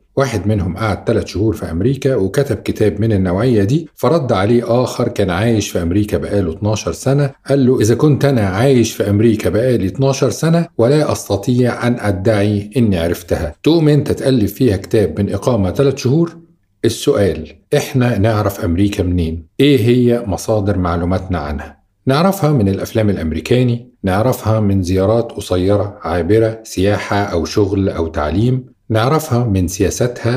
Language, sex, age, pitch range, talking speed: Arabic, male, 50-69, 100-130 Hz, 145 wpm